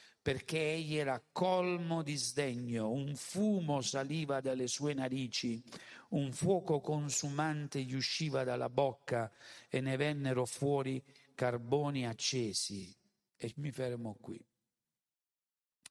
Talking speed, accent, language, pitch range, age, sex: 110 wpm, native, Italian, 115-150 Hz, 50-69, male